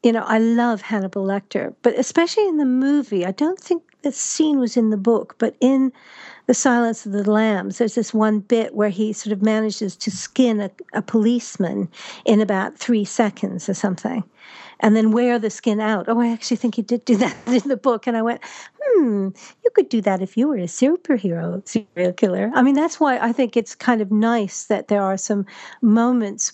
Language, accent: English, American